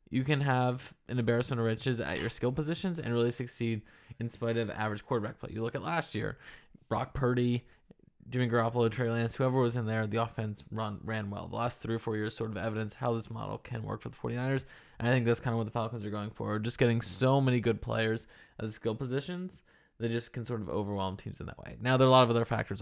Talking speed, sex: 250 wpm, male